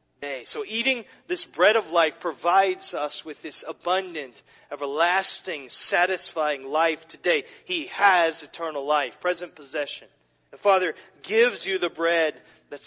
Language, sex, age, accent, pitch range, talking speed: English, male, 40-59, American, 150-240 Hz, 130 wpm